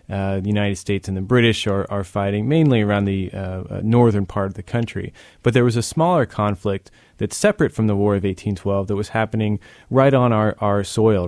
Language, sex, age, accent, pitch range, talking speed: English, male, 30-49, American, 100-115 Hz, 220 wpm